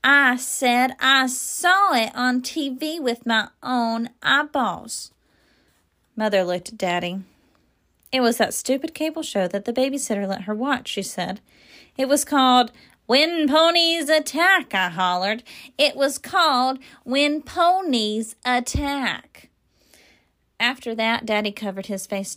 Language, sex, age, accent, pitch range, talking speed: English, female, 30-49, American, 195-285 Hz, 130 wpm